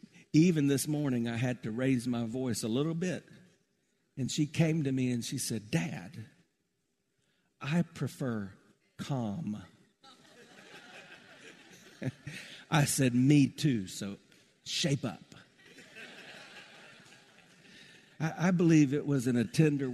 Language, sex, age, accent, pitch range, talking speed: English, male, 50-69, American, 115-150 Hz, 115 wpm